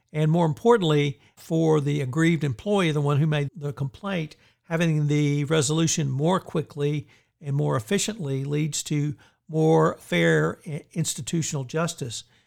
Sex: male